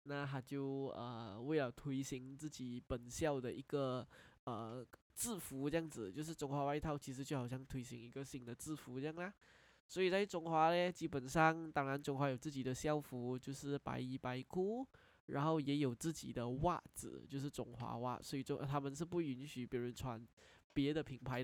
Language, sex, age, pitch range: Chinese, male, 10-29, 125-160 Hz